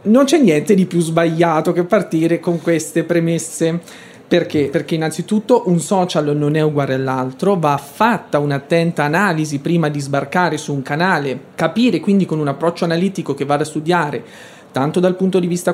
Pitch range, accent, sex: 145-185 Hz, native, male